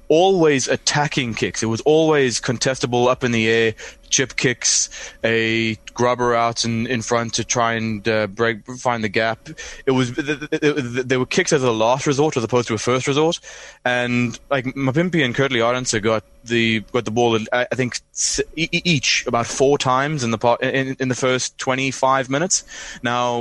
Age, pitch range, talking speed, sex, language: 20-39, 110-130 Hz, 180 wpm, male, English